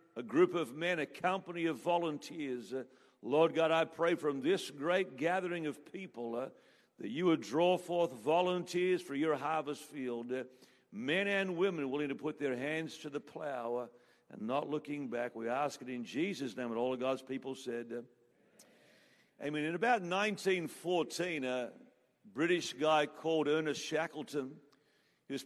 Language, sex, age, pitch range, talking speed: English, male, 50-69, 145-180 Hz, 170 wpm